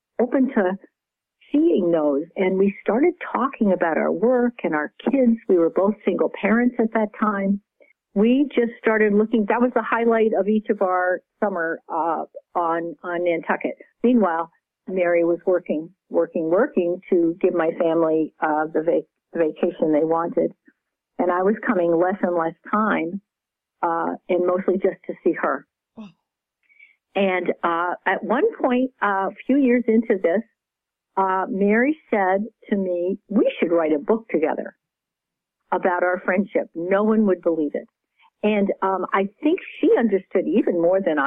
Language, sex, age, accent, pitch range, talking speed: English, female, 50-69, American, 175-225 Hz, 160 wpm